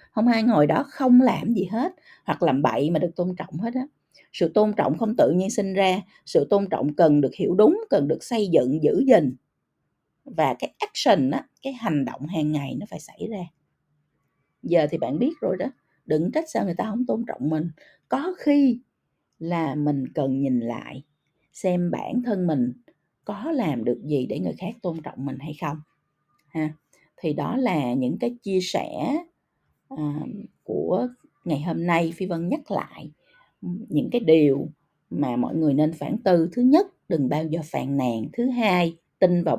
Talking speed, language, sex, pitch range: 190 wpm, Vietnamese, female, 155-240 Hz